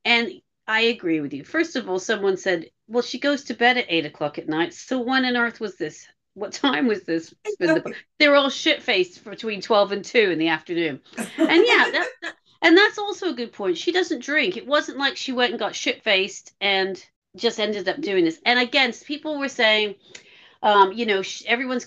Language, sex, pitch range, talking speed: English, female, 190-275 Hz, 210 wpm